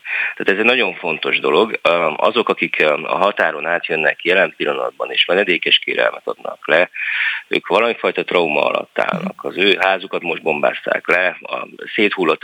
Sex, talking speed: male, 145 wpm